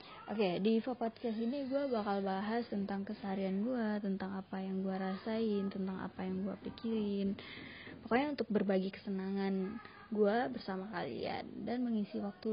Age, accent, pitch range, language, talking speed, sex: 20-39, native, 195-225 Hz, Indonesian, 155 wpm, female